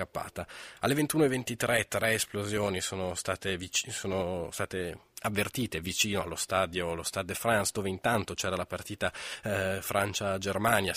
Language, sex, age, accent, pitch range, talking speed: Italian, male, 20-39, native, 95-110 Hz, 125 wpm